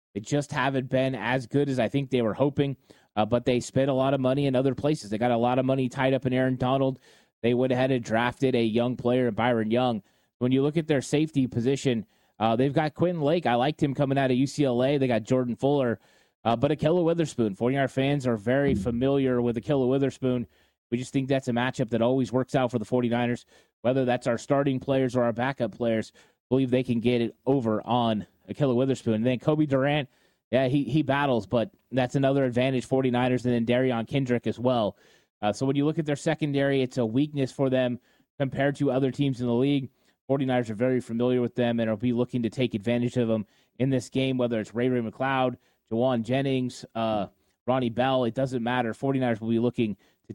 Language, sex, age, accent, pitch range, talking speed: English, male, 30-49, American, 120-135 Hz, 225 wpm